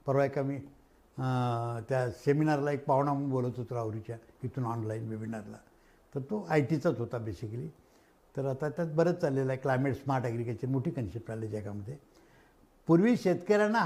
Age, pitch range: 60-79, 125-175 Hz